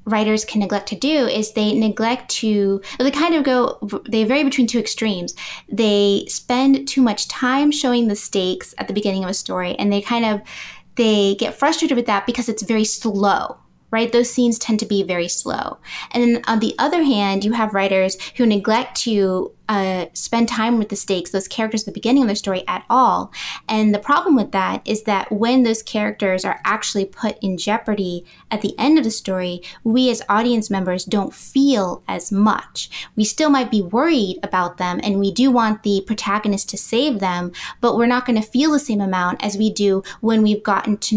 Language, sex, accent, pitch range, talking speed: English, female, American, 195-240 Hz, 205 wpm